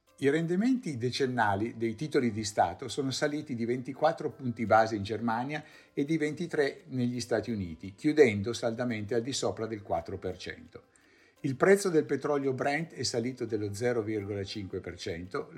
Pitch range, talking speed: 105-140 Hz, 145 wpm